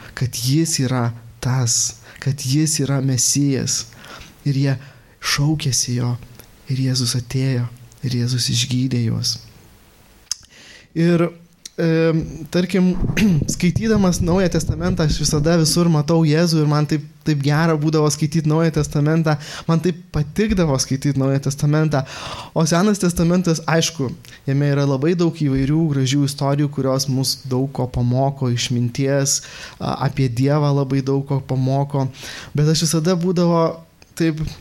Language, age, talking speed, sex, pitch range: English, 20-39, 125 wpm, male, 130-165 Hz